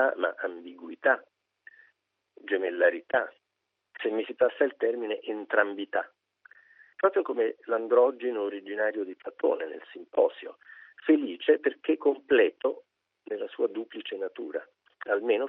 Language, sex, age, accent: Italian, male, 50-69, native